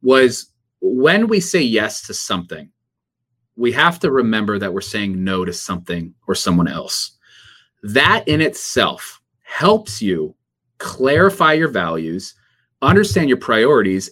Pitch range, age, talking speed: 100-130 Hz, 30-49, 130 wpm